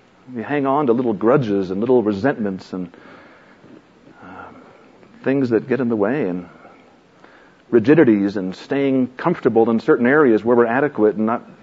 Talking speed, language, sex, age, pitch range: 155 wpm, English, male, 50-69, 105-135 Hz